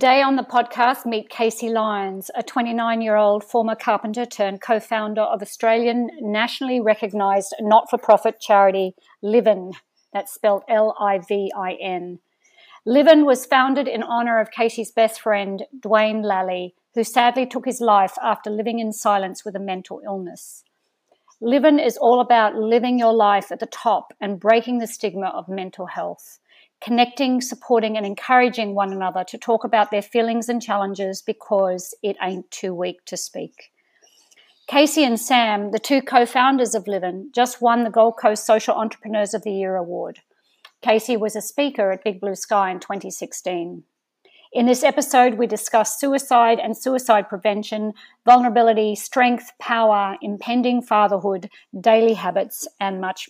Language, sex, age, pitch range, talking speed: English, female, 50-69, 200-245 Hz, 145 wpm